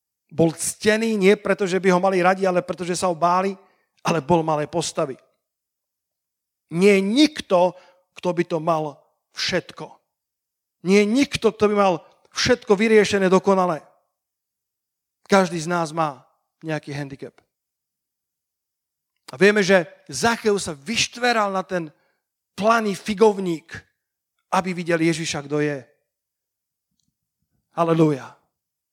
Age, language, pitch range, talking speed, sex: 40-59, Slovak, 160-195 Hz, 120 wpm, male